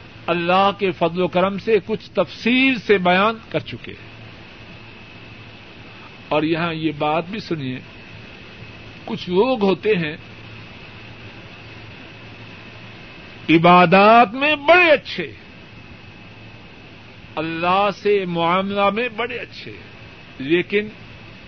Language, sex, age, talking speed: Urdu, male, 50-69, 90 wpm